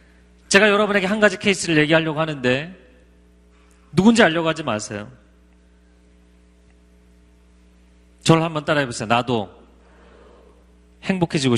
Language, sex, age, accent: Korean, male, 30-49, native